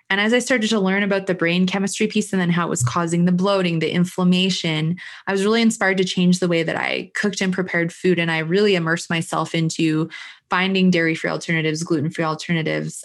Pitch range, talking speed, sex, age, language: 165-200 Hz, 210 wpm, female, 20-39, English